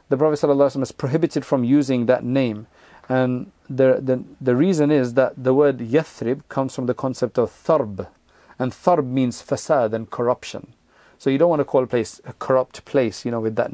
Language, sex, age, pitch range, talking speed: English, male, 40-59, 125-145 Hz, 200 wpm